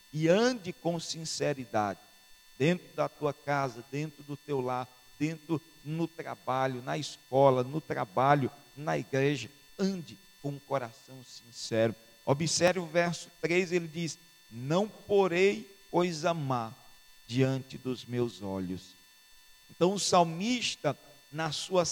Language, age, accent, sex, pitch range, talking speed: Portuguese, 50-69, Brazilian, male, 135-180 Hz, 125 wpm